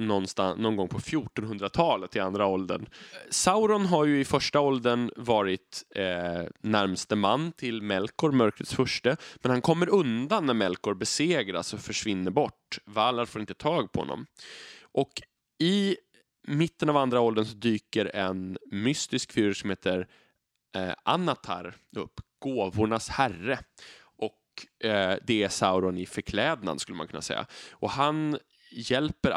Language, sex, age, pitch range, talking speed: Swedish, male, 20-39, 95-140 Hz, 145 wpm